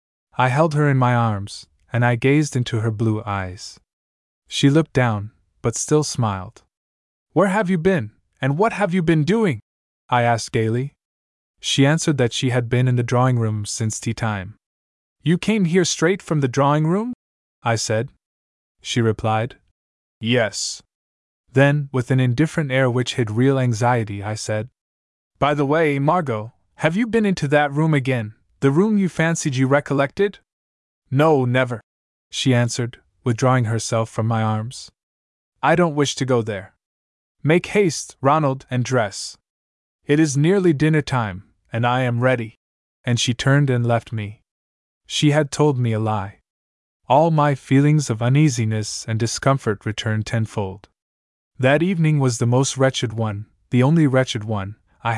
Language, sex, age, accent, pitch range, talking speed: English, male, 20-39, American, 105-140 Hz, 160 wpm